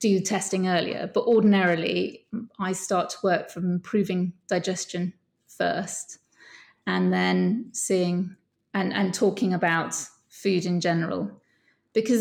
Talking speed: 120 wpm